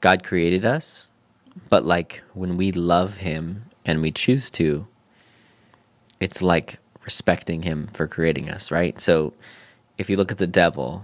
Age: 20-39